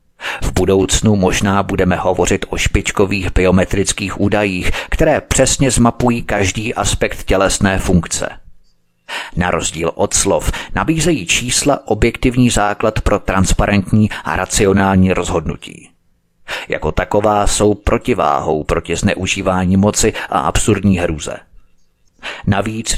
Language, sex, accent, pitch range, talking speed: Czech, male, native, 90-110 Hz, 105 wpm